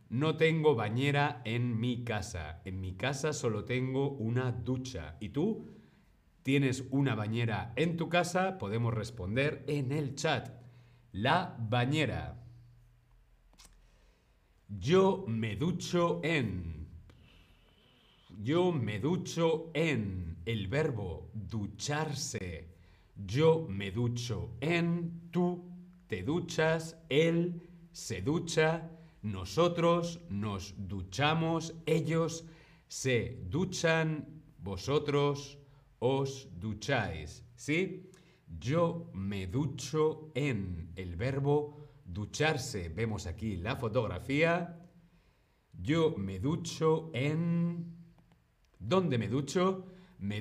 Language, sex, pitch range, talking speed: Spanish, male, 110-160 Hz, 95 wpm